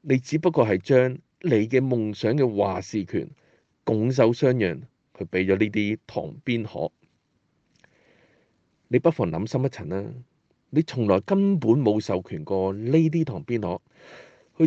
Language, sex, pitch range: Chinese, male, 105-150 Hz